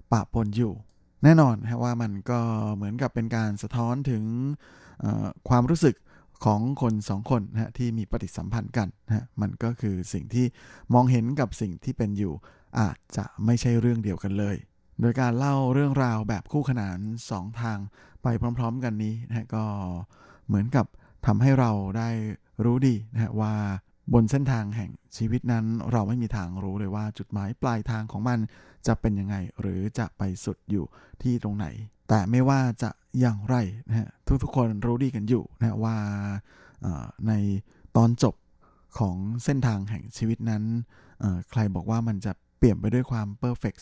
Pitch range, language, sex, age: 105-120 Hz, Thai, male, 20-39